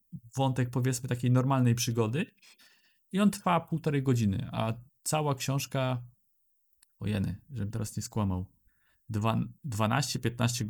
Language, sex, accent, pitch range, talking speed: Polish, male, native, 120-160 Hz, 110 wpm